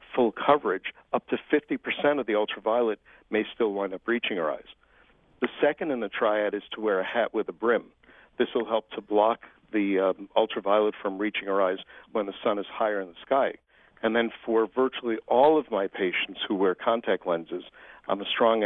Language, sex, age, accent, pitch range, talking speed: English, male, 50-69, American, 95-115 Hz, 205 wpm